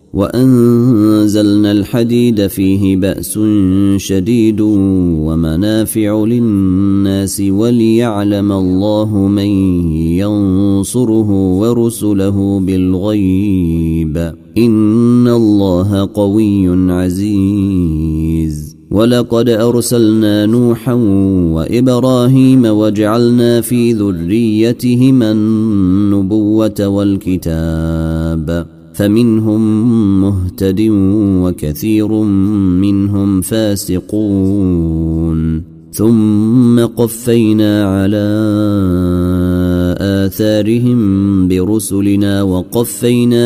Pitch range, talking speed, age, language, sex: 95-110 Hz, 50 wpm, 30-49, Arabic, male